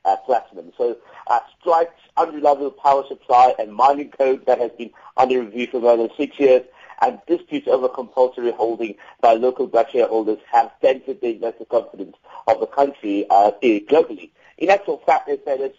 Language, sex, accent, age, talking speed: English, male, British, 50-69, 175 wpm